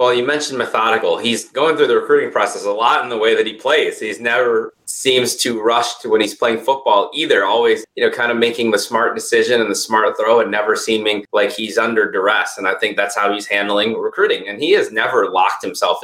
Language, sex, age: English, male, 30-49